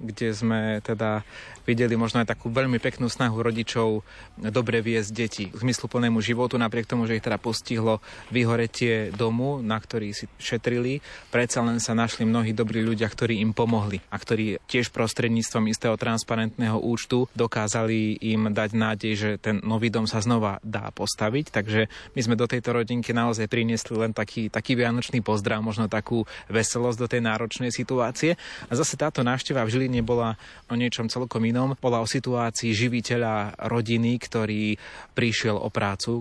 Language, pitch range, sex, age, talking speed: Slovak, 110-120 Hz, male, 30-49, 155 wpm